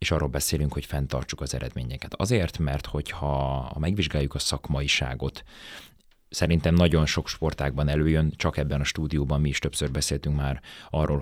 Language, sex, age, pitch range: Hungarian, male, 30-49, 70-85 Hz